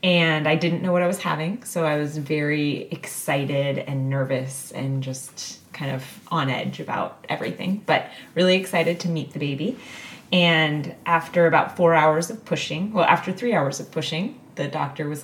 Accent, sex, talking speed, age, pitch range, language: American, female, 180 wpm, 20-39, 155-195 Hz, English